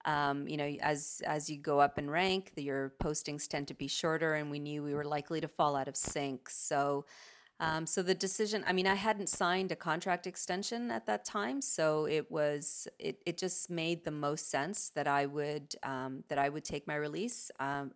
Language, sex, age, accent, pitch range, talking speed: English, female, 30-49, American, 145-165 Hz, 210 wpm